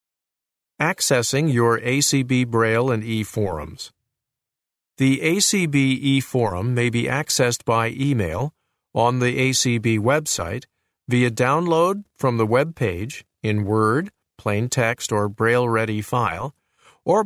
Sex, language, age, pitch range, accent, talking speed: male, English, 50-69, 115-140 Hz, American, 115 wpm